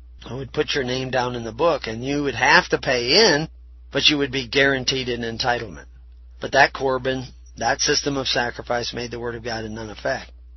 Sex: male